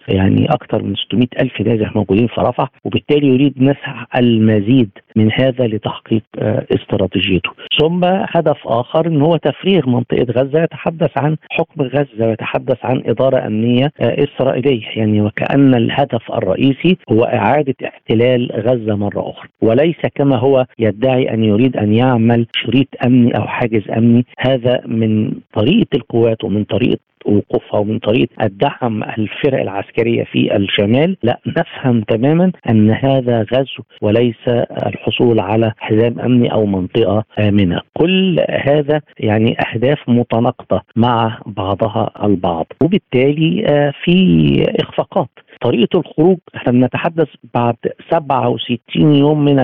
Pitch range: 110-140 Hz